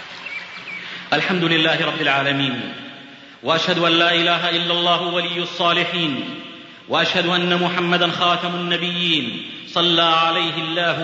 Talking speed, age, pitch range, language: 110 wpm, 40-59, 175-195 Hz, Arabic